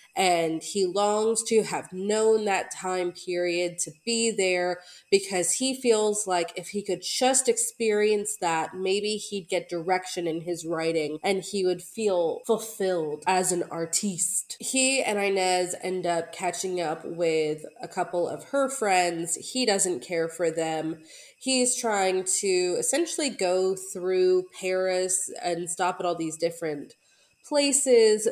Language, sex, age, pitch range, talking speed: English, female, 20-39, 175-215 Hz, 145 wpm